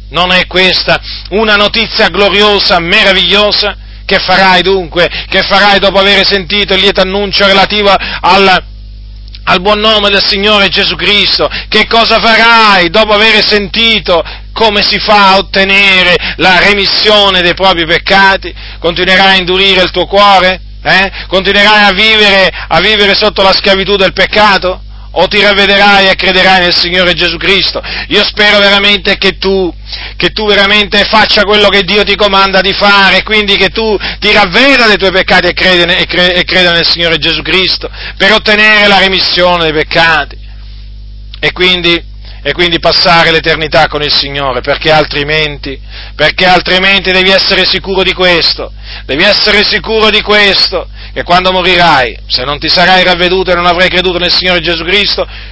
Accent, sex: native, male